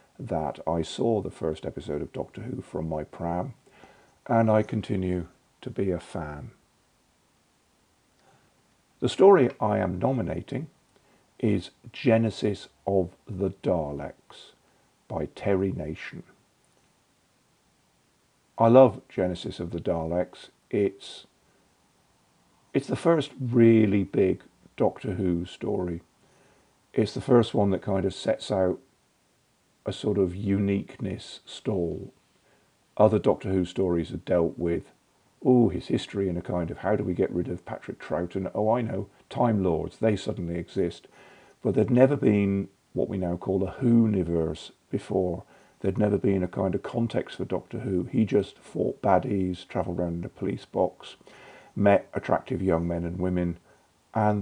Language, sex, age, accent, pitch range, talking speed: English, male, 50-69, British, 90-115 Hz, 145 wpm